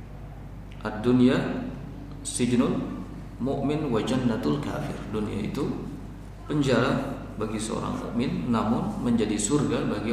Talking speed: 90 wpm